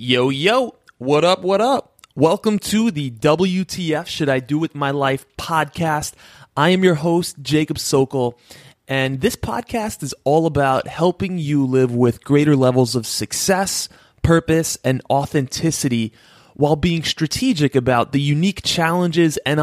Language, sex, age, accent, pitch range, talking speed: English, male, 20-39, American, 125-160 Hz, 145 wpm